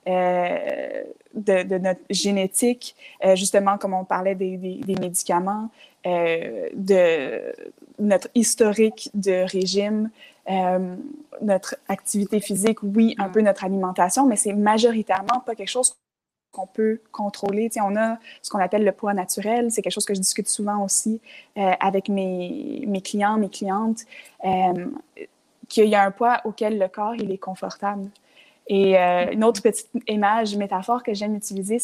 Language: French